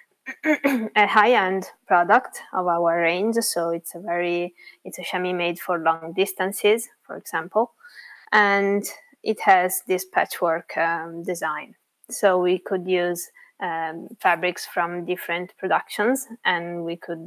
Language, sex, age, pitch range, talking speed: English, female, 20-39, 170-200 Hz, 130 wpm